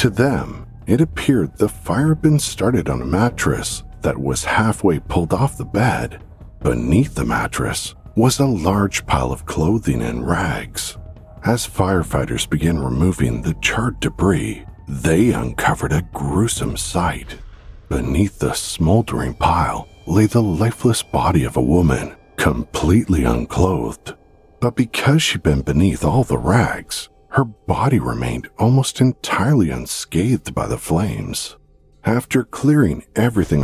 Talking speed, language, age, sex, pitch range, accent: 135 wpm, English, 50-69, male, 80-120 Hz, American